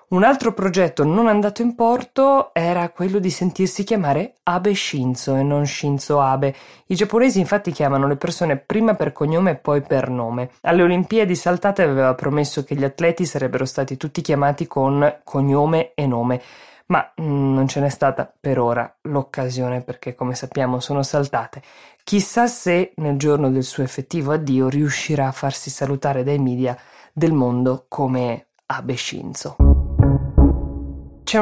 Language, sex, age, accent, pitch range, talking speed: Italian, female, 20-39, native, 130-165 Hz, 155 wpm